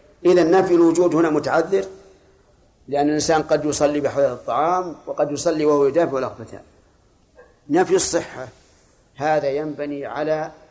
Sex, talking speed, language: male, 120 wpm, Arabic